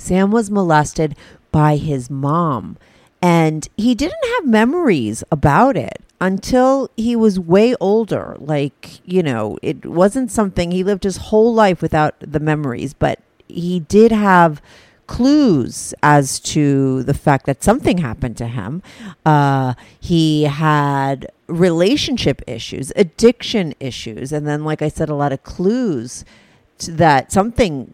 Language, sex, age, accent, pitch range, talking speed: English, female, 40-59, American, 145-185 Hz, 135 wpm